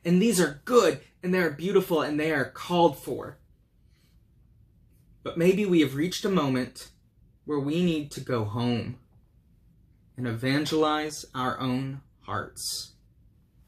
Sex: male